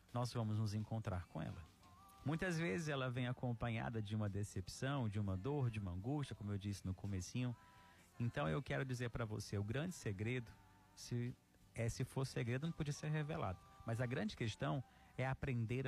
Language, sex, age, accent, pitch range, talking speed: Portuguese, male, 40-59, Brazilian, 105-155 Hz, 185 wpm